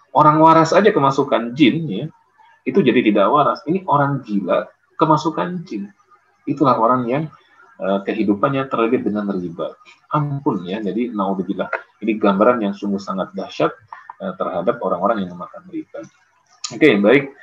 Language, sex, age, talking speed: Indonesian, male, 30-49, 150 wpm